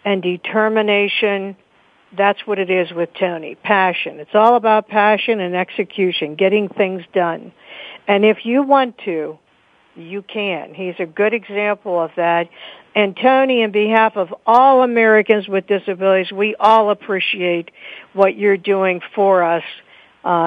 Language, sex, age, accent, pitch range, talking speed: English, female, 60-79, American, 180-220 Hz, 145 wpm